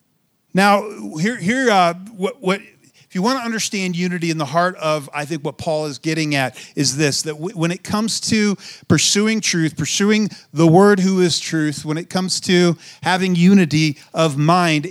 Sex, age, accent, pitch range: male, 40-59, American, 155-205 Hz